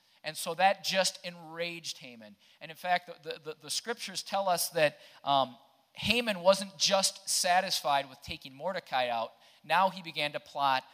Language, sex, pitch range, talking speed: English, male, 145-185 Hz, 165 wpm